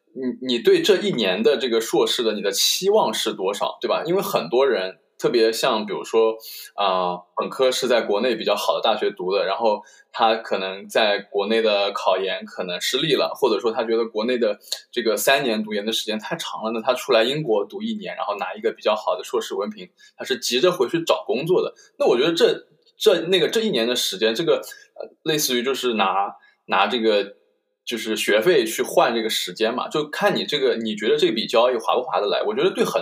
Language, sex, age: Chinese, male, 20-39